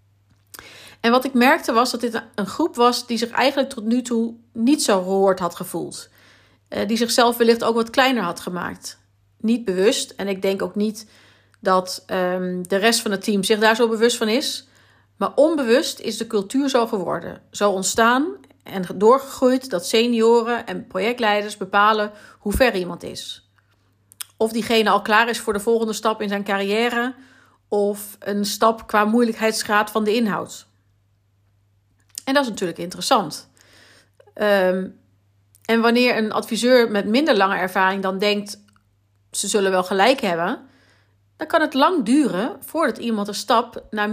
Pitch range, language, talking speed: 185-240 Hz, Dutch, 160 wpm